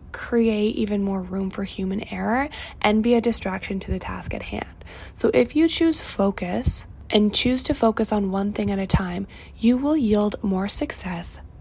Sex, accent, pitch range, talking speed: female, American, 190-225 Hz, 185 wpm